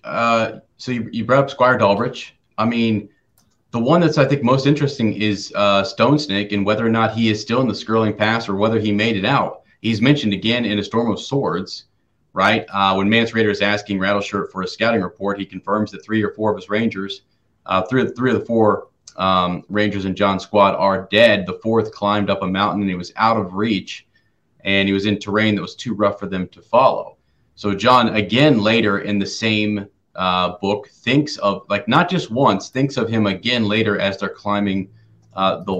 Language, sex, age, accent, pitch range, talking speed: English, male, 30-49, American, 100-115 Hz, 220 wpm